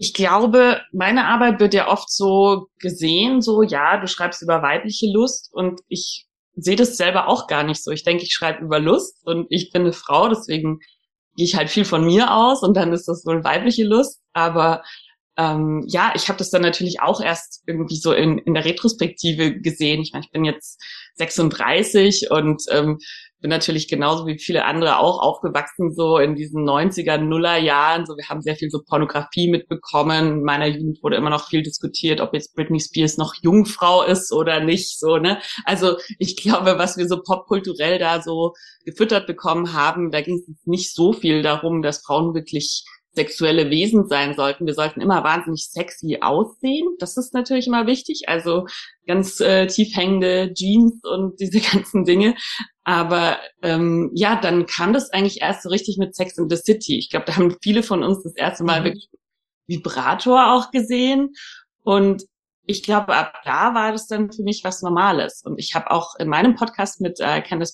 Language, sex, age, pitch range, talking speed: German, female, 20-39, 160-200 Hz, 190 wpm